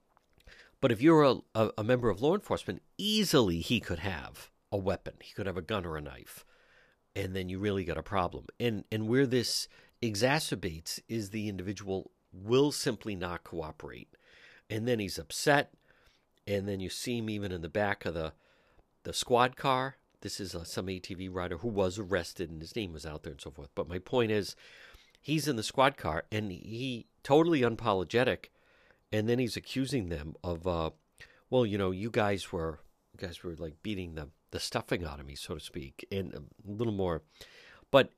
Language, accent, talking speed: English, American, 195 wpm